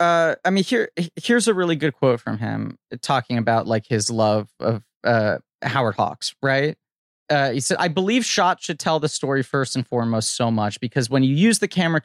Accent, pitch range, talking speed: American, 125-165 Hz, 210 wpm